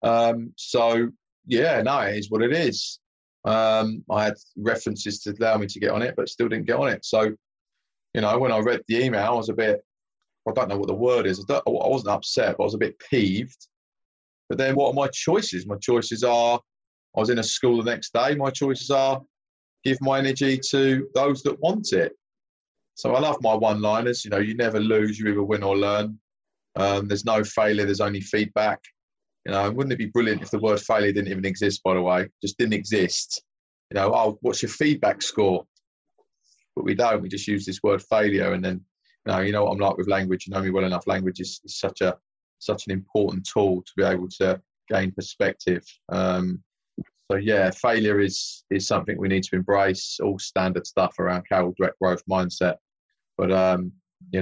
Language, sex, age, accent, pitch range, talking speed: English, male, 30-49, British, 95-115 Hz, 215 wpm